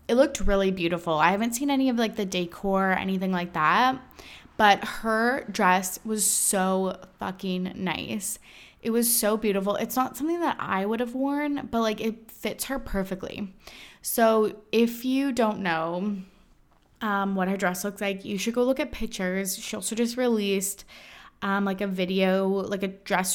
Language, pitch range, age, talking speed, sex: English, 190-225 Hz, 20-39, 175 wpm, female